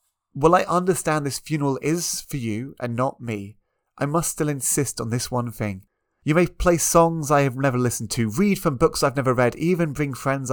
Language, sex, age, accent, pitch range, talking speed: English, male, 30-49, British, 110-145 Hz, 210 wpm